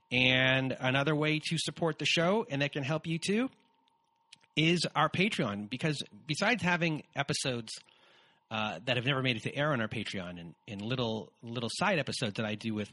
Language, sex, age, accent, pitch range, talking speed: English, male, 30-49, American, 115-160 Hz, 190 wpm